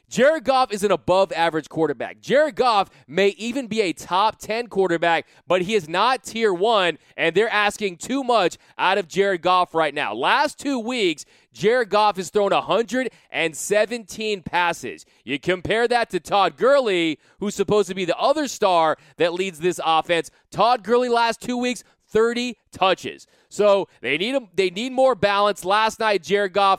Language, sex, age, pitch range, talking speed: English, male, 20-39, 175-225 Hz, 170 wpm